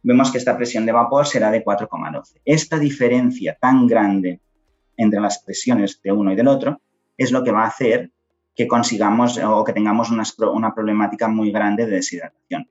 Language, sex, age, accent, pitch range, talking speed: Spanish, male, 30-49, Spanish, 100-125 Hz, 185 wpm